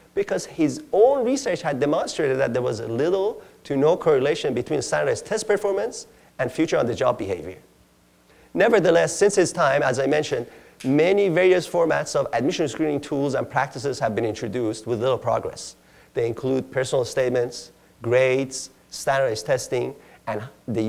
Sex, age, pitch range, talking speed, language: male, 40-59, 115-170 Hz, 150 wpm, English